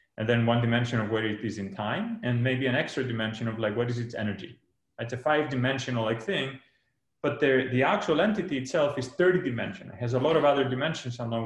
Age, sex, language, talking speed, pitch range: 30-49, male, English, 225 wpm, 110-140 Hz